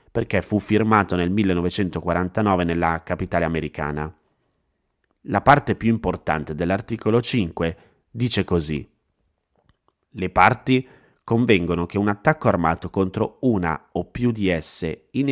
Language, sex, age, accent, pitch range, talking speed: Italian, male, 30-49, native, 85-105 Hz, 120 wpm